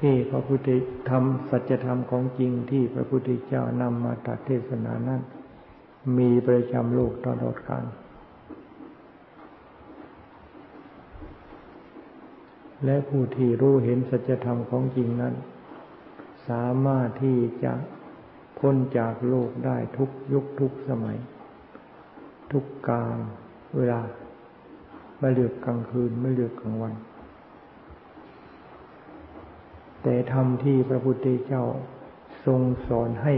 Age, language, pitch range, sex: 60-79, Thai, 120-130 Hz, male